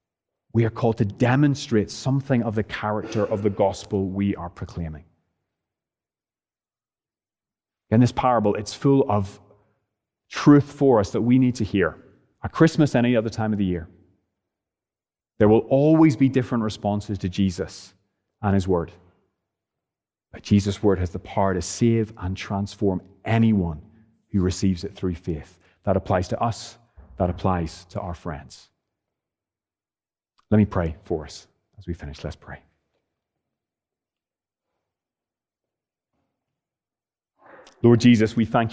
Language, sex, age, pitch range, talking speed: English, male, 30-49, 100-120 Hz, 135 wpm